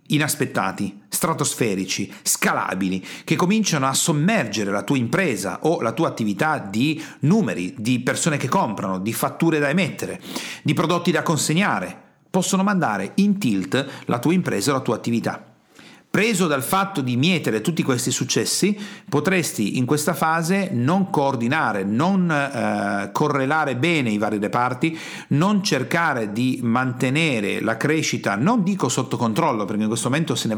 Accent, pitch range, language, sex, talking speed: native, 125-170 Hz, Italian, male, 150 wpm